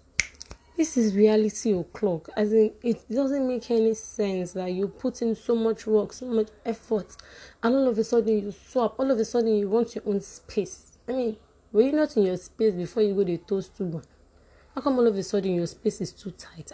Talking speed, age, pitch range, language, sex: 235 wpm, 20-39, 180-225 Hz, English, female